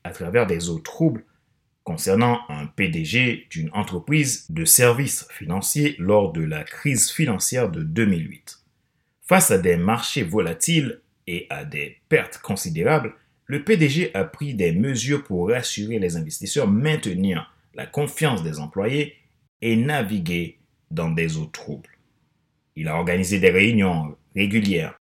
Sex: male